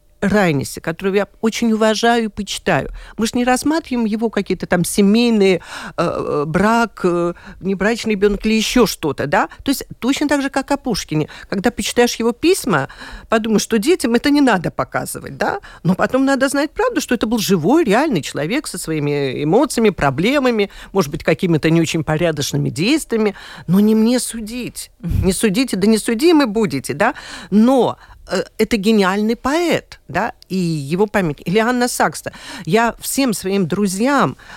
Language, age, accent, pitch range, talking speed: Russian, 50-69, native, 190-250 Hz, 160 wpm